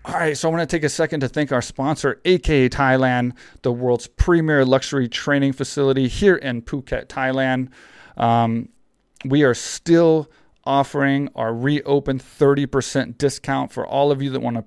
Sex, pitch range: male, 115-135 Hz